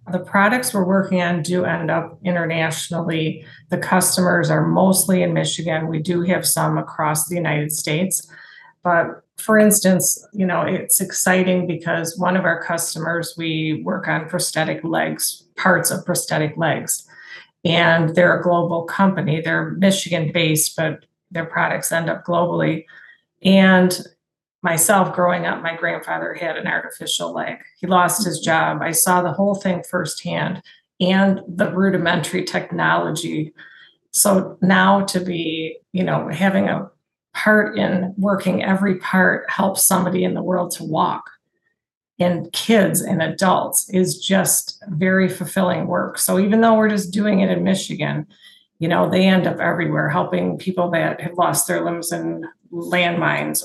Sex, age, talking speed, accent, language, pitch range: female, 30-49, 150 wpm, American, English, 165-190 Hz